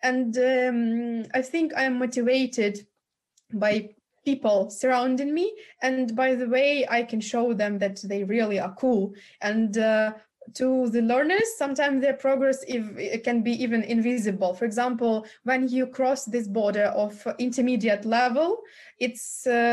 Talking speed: 145 wpm